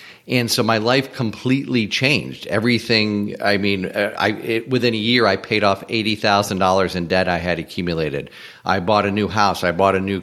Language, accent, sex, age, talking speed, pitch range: English, American, male, 40-59, 180 wpm, 105-125 Hz